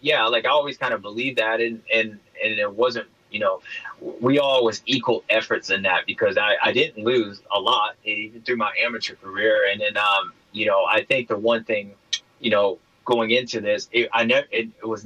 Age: 30-49